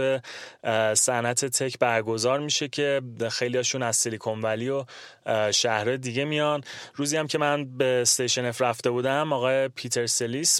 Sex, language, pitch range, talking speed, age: male, Persian, 115-130 Hz, 140 wpm, 30-49